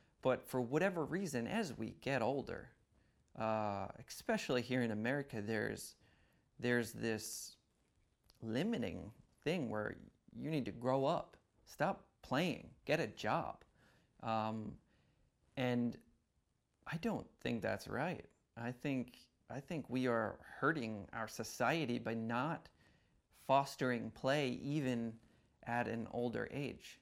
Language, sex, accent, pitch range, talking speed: English, male, American, 110-135 Hz, 120 wpm